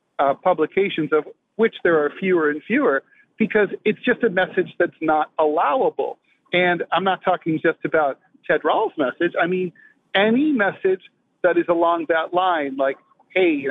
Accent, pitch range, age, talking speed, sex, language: American, 175-255 Hz, 50-69, 160 wpm, male, English